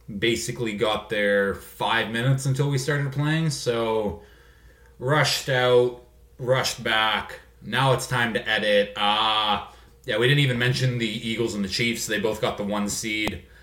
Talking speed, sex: 165 wpm, male